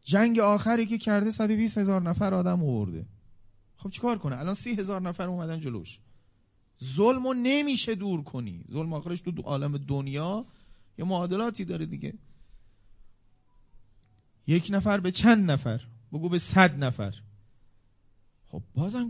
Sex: male